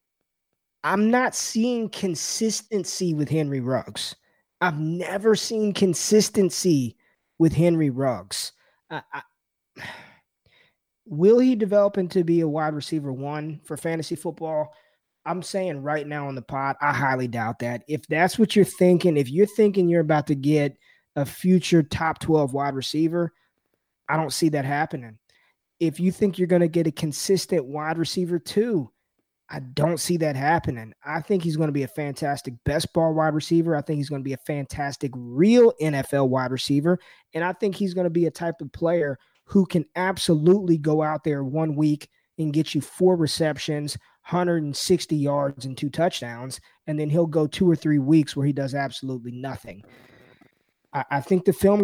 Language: English